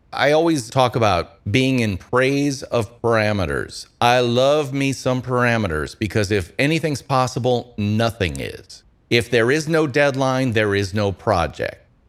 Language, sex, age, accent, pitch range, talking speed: English, male, 40-59, American, 105-135 Hz, 145 wpm